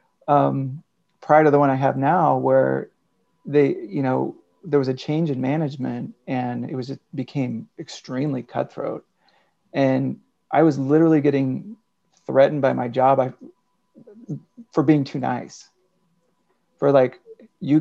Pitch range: 125-160 Hz